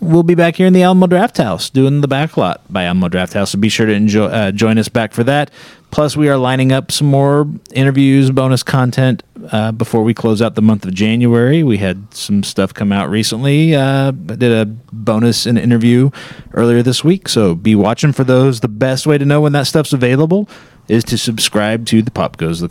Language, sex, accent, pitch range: English, male, American, 115-150 Hz